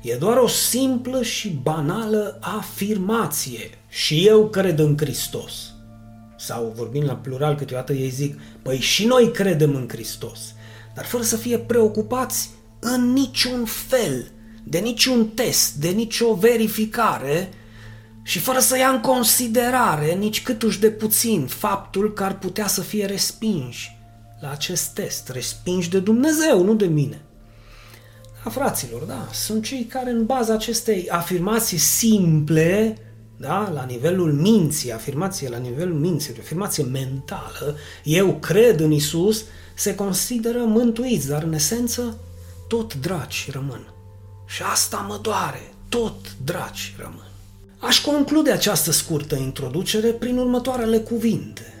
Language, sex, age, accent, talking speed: Romanian, male, 30-49, native, 135 wpm